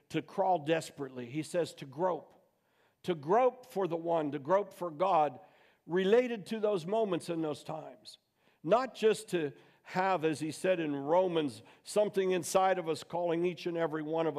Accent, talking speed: American, 175 wpm